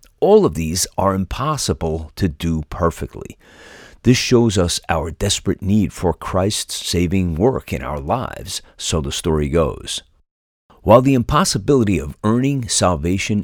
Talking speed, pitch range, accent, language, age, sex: 140 wpm, 80-110 Hz, American, English, 50-69, male